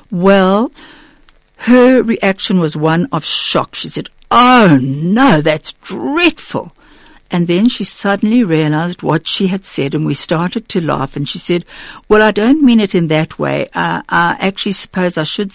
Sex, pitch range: female, 150-210 Hz